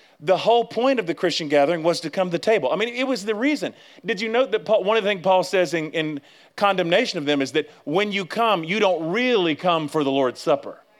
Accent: American